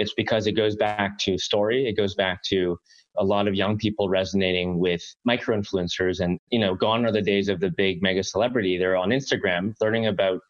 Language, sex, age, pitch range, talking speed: English, male, 20-39, 95-110 Hz, 200 wpm